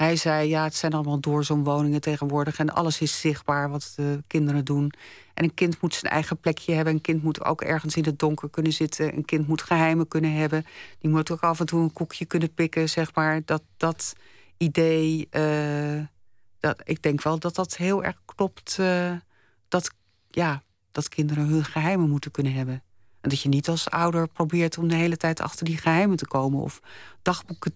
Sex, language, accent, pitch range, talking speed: female, Dutch, Dutch, 150-170 Hz, 195 wpm